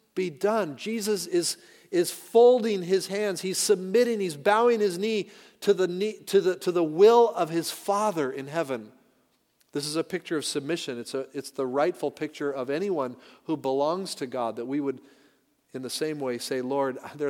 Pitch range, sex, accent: 130-175 Hz, male, American